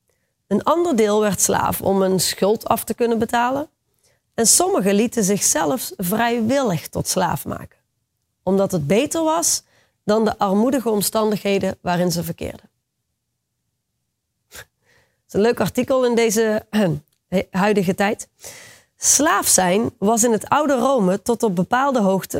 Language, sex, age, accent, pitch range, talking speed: Dutch, female, 30-49, Dutch, 185-240 Hz, 140 wpm